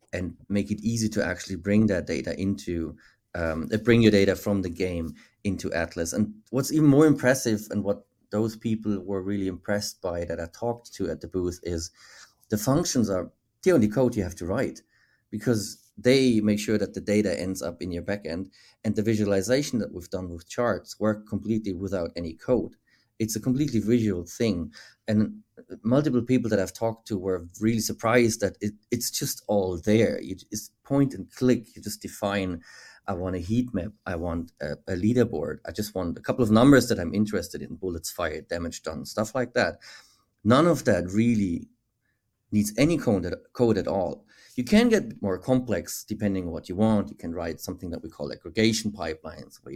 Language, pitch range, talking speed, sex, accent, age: English, 90-115 Hz, 195 wpm, male, German, 30-49